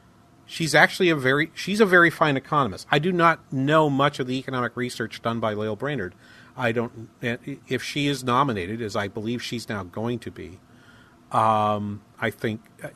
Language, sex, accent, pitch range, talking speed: English, male, American, 110-130 Hz, 180 wpm